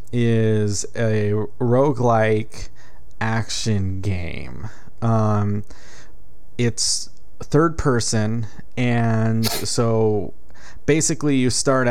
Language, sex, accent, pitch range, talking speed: English, male, American, 105-120 Hz, 70 wpm